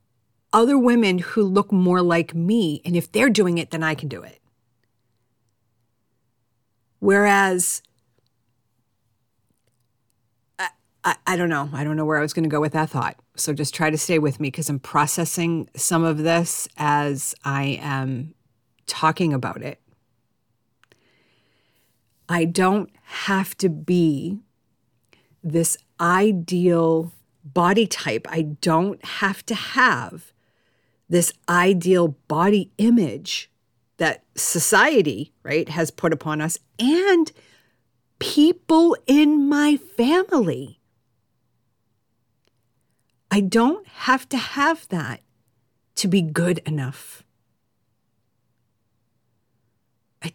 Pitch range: 120-185 Hz